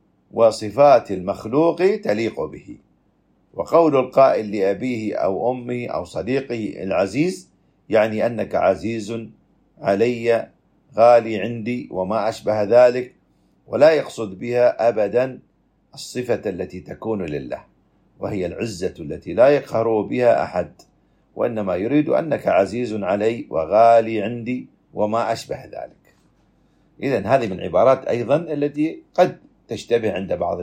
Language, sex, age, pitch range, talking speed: Arabic, male, 50-69, 100-125 Hz, 110 wpm